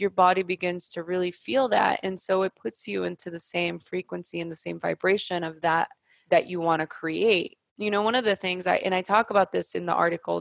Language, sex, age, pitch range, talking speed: English, female, 20-39, 170-200 Hz, 240 wpm